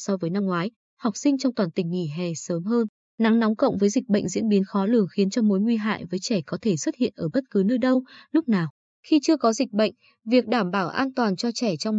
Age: 20-39